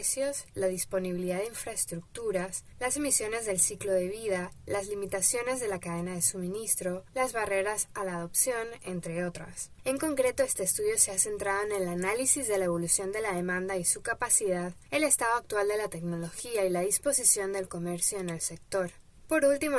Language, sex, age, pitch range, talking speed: Spanish, female, 20-39, 180-225 Hz, 180 wpm